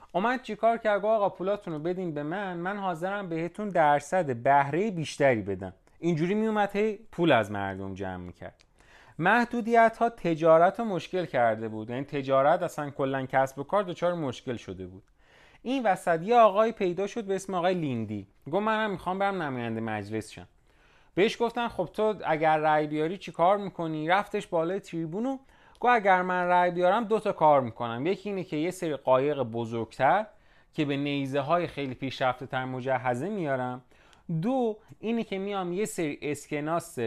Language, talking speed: Persian, 160 wpm